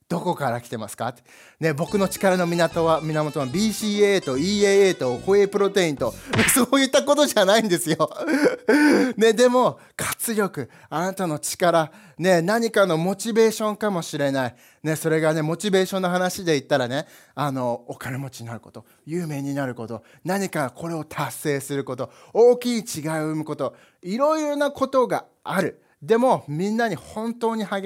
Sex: male